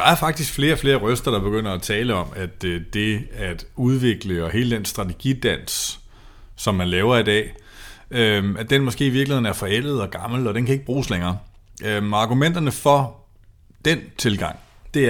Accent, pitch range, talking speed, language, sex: native, 95-125 Hz, 180 wpm, Danish, male